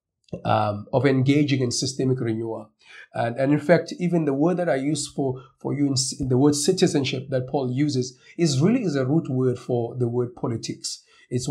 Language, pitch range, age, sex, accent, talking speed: English, 120-145 Hz, 50-69, male, South African, 200 wpm